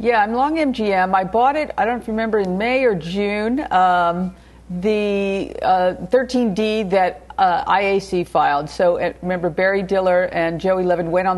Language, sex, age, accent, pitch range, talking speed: English, female, 50-69, American, 180-235 Hz, 165 wpm